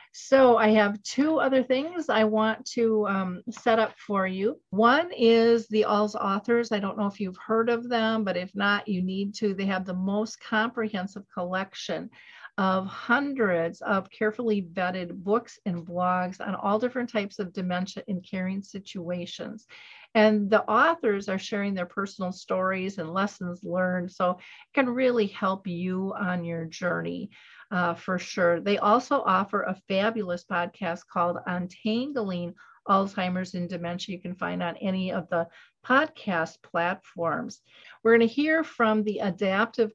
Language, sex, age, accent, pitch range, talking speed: English, female, 50-69, American, 185-225 Hz, 160 wpm